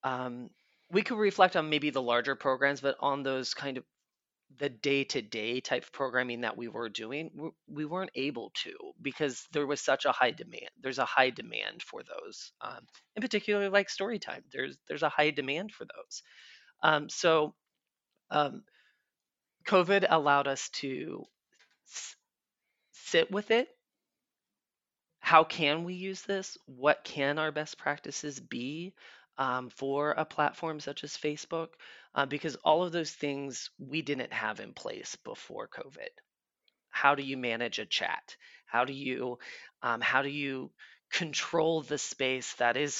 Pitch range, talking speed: 130-160 Hz, 160 wpm